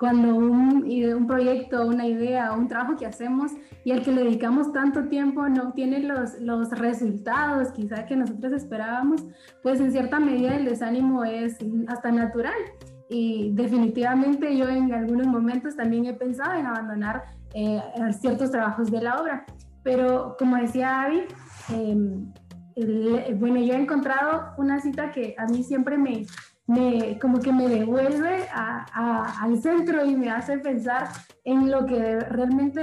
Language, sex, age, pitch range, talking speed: Spanish, female, 10-29, 235-285 Hz, 160 wpm